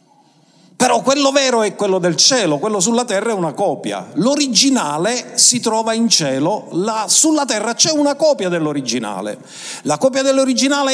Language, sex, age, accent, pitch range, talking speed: Italian, male, 50-69, native, 150-235 Hz, 150 wpm